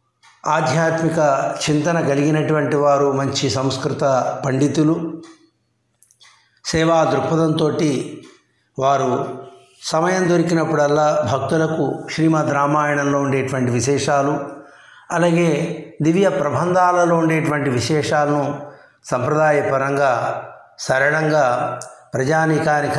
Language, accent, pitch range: Telugu, native, 140-160 Hz